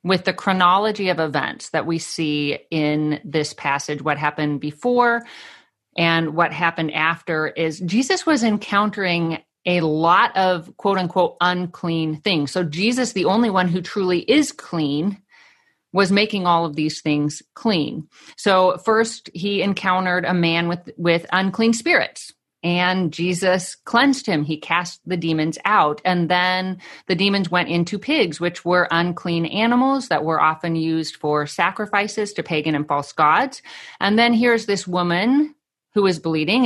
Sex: female